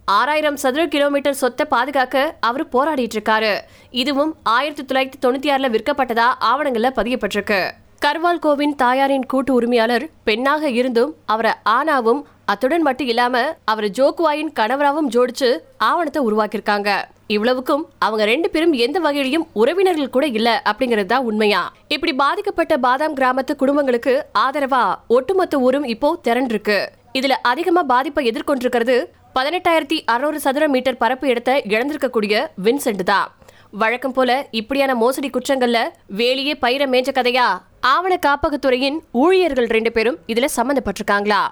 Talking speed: 50 wpm